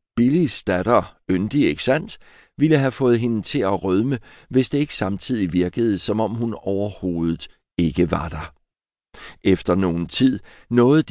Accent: native